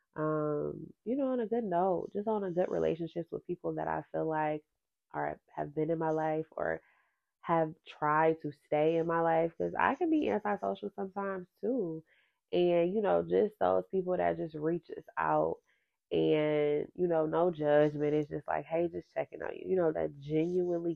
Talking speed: 190 wpm